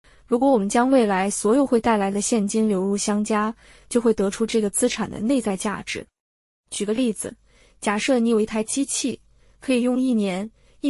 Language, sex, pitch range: Chinese, female, 210-255 Hz